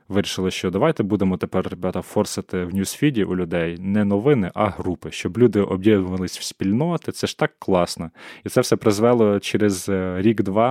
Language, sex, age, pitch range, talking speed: Ukrainian, male, 20-39, 95-110 Hz, 170 wpm